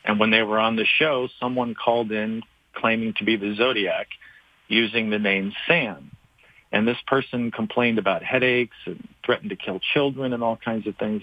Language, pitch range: English, 105-125 Hz